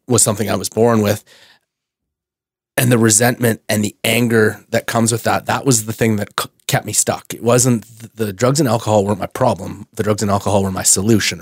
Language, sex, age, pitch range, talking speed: English, male, 30-49, 105-120 Hz, 215 wpm